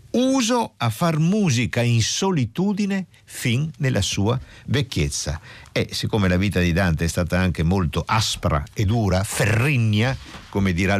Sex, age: male, 50-69